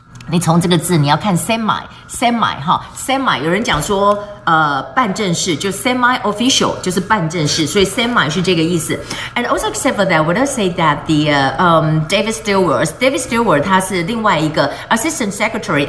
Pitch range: 170-225 Hz